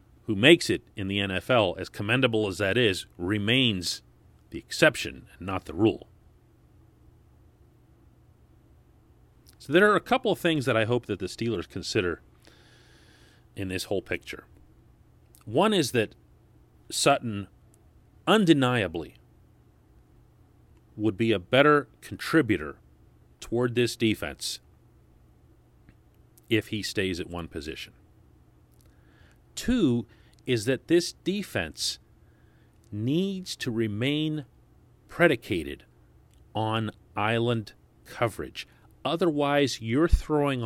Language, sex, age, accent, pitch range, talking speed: English, male, 40-59, American, 105-130 Hz, 105 wpm